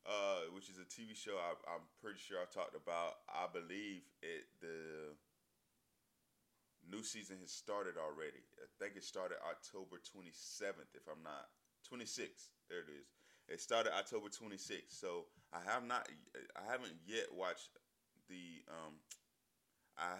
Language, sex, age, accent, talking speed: English, male, 20-39, American, 150 wpm